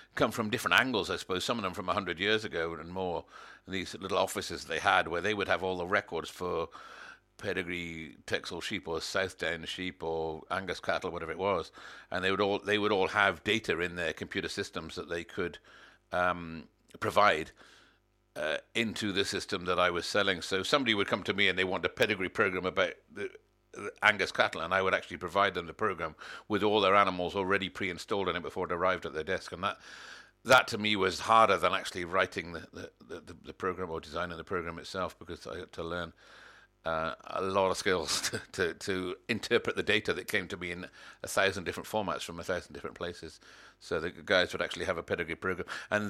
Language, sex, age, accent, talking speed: English, male, 60-79, British, 215 wpm